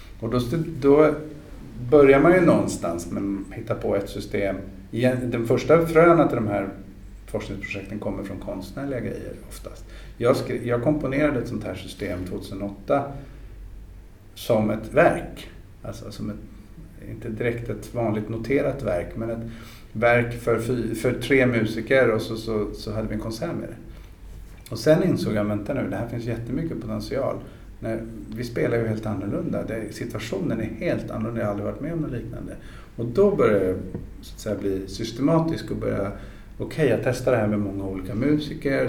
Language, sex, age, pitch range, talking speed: Swedish, male, 50-69, 100-120 Hz, 175 wpm